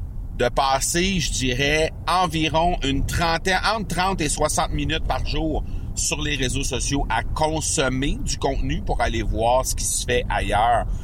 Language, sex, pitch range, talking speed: French, male, 100-135 Hz, 165 wpm